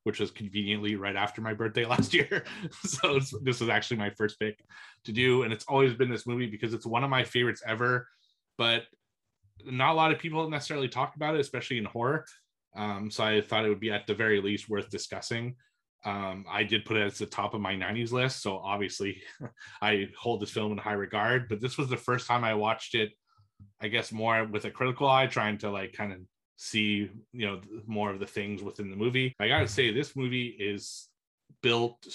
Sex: male